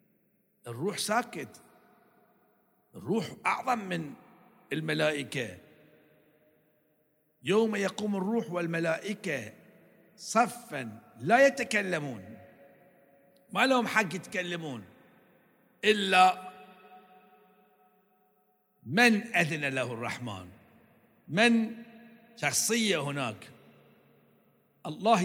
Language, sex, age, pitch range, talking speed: Arabic, male, 60-79, 155-225 Hz, 60 wpm